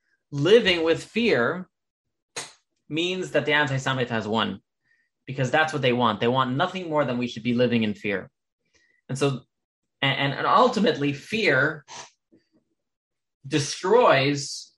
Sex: male